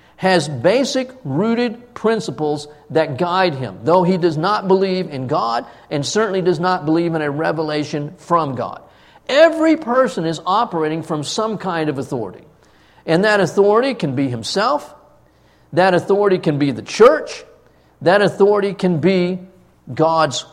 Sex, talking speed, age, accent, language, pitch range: male, 145 wpm, 50-69, American, English, 160-230 Hz